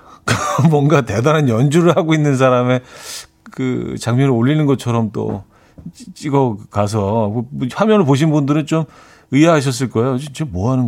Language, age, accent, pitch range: Korean, 40-59, native, 100-145 Hz